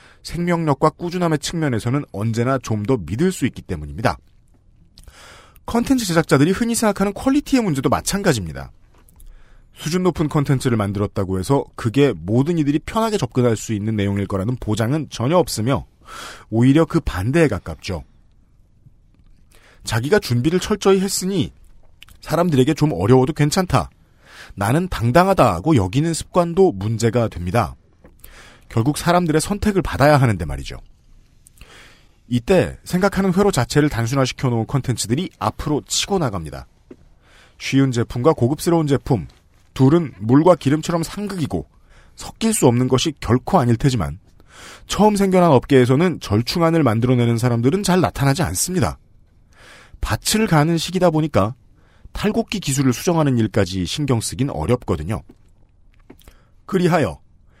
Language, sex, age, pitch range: Korean, male, 40-59, 105-165 Hz